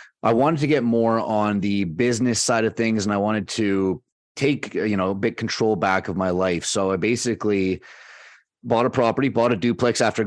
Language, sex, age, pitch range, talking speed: English, male, 30-49, 95-110 Hz, 205 wpm